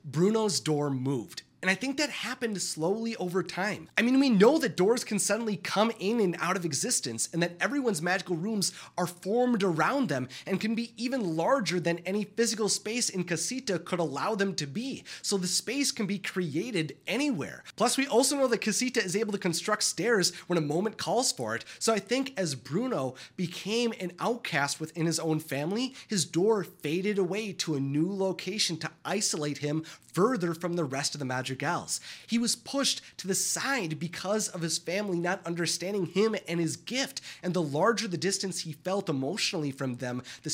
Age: 30-49